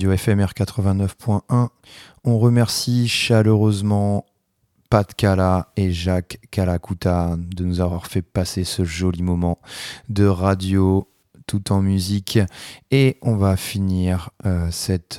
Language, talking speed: French, 115 wpm